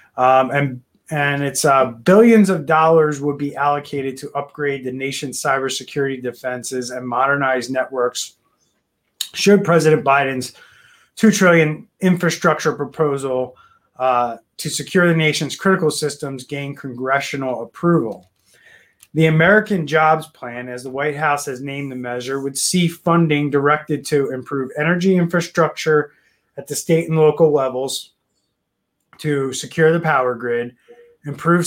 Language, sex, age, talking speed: English, male, 20-39, 130 wpm